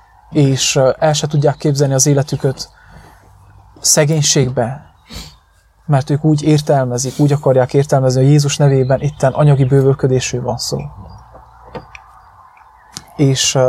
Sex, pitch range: male, 130-150 Hz